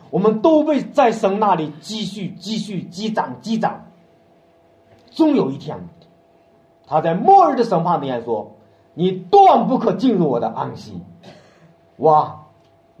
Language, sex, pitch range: Chinese, male, 165-250 Hz